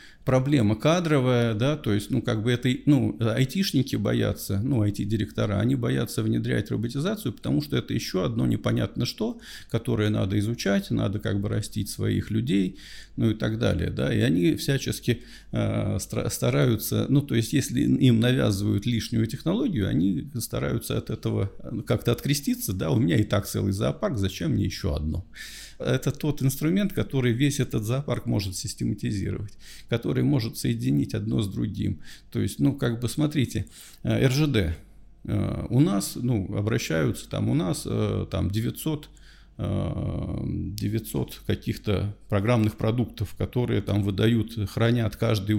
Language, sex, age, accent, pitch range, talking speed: Russian, male, 40-59, native, 100-130 Hz, 140 wpm